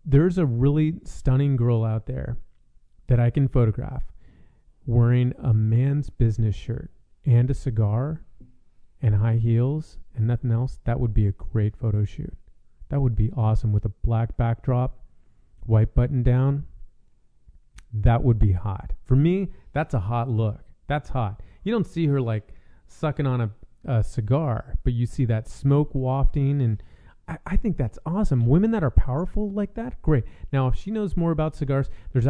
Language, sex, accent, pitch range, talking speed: English, male, American, 115-150 Hz, 170 wpm